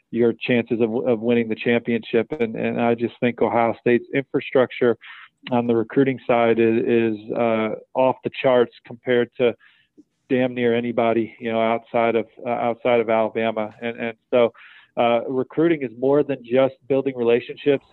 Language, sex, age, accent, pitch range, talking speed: English, male, 40-59, American, 115-135 Hz, 165 wpm